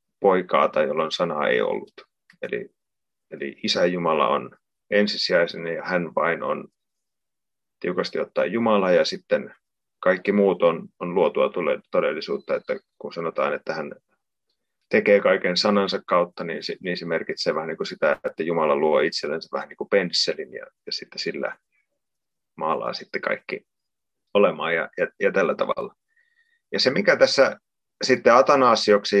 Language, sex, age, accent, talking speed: Finnish, male, 30-49, native, 150 wpm